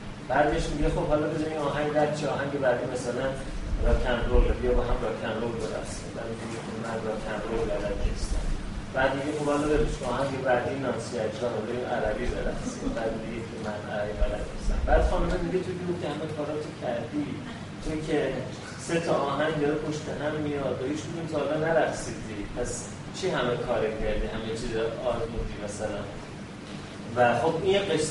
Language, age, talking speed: Persian, 30-49, 145 wpm